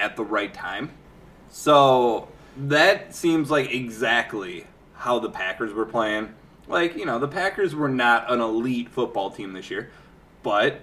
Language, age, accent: English, 20-39, American